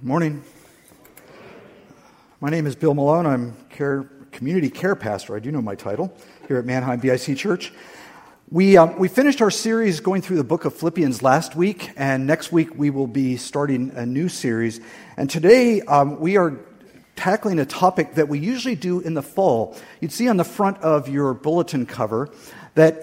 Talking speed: 185 wpm